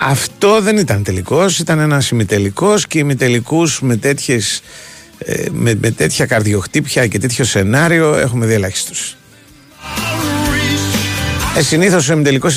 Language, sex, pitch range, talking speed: Greek, male, 110-150 Hz, 115 wpm